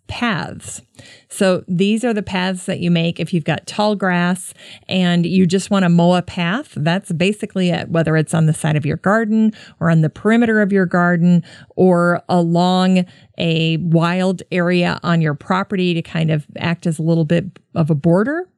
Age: 40-59